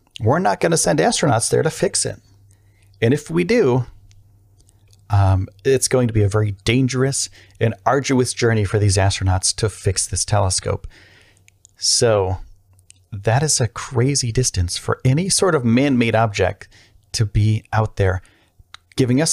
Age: 30-49